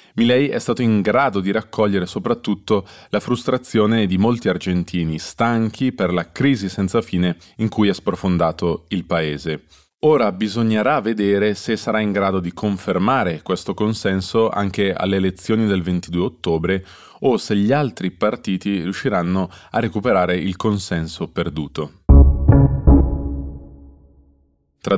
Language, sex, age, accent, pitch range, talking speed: Italian, male, 20-39, native, 90-110 Hz, 130 wpm